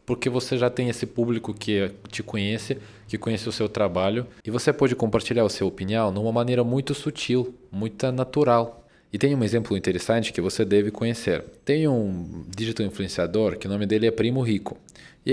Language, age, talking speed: Portuguese, 20-39, 190 wpm